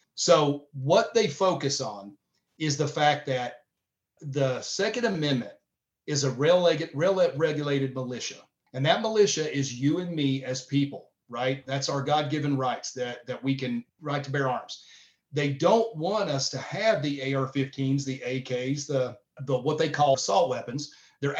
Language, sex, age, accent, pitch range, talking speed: English, male, 40-59, American, 135-155 Hz, 165 wpm